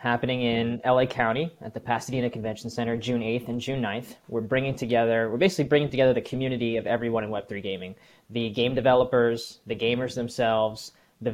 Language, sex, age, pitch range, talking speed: English, male, 20-39, 115-135 Hz, 185 wpm